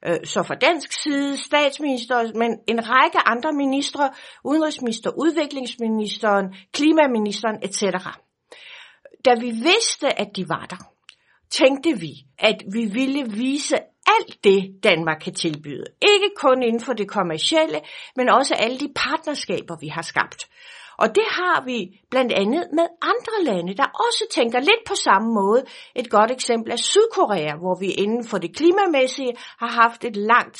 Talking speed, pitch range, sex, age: 150 wpm, 205-315 Hz, female, 60-79